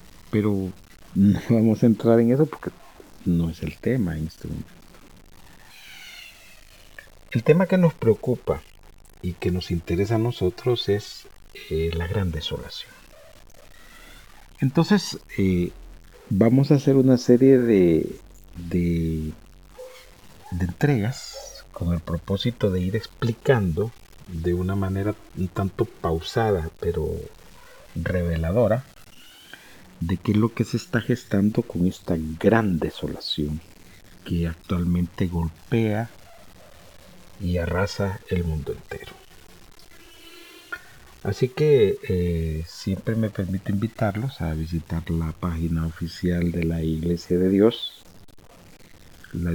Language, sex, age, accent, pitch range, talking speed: Spanish, male, 50-69, Mexican, 85-115 Hz, 110 wpm